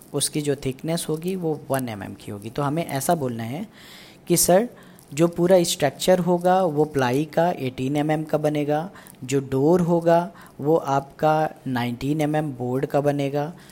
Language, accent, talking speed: Hindi, native, 170 wpm